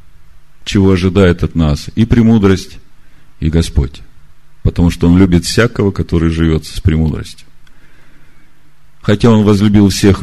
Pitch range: 80-105 Hz